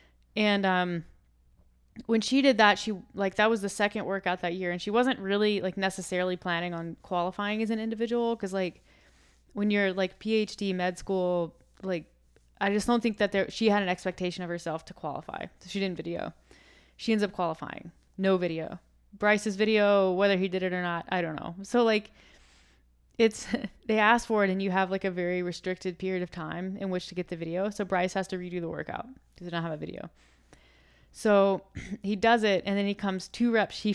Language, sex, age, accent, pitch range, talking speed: English, female, 20-39, American, 175-205 Hz, 205 wpm